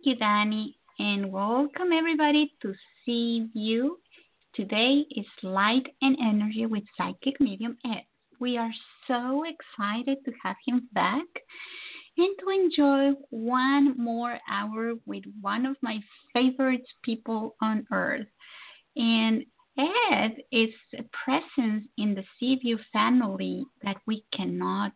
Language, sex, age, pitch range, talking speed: English, female, 20-39, 220-280 Hz, 125 wpm